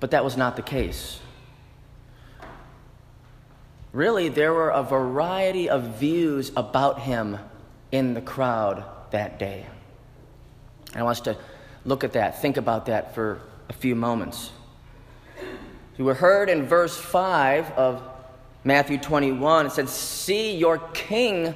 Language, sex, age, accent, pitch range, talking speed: English, male, 30-49, American, 130-170 Hz, 135 wpm